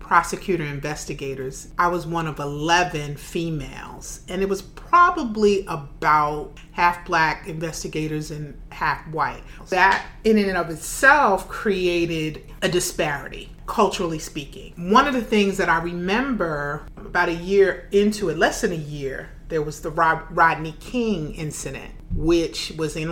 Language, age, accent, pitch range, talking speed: English, 30-49, American, 150-185 Hz, 140 wpm